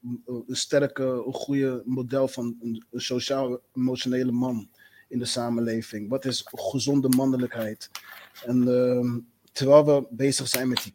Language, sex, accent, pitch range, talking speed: Dutch, male, Dutch, 125-145 Hz, 130 wpm